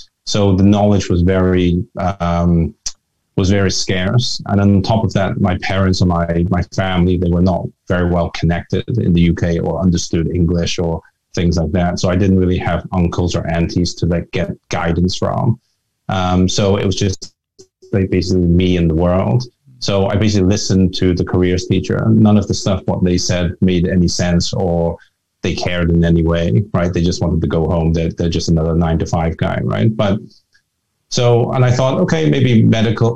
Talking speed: 195 wpm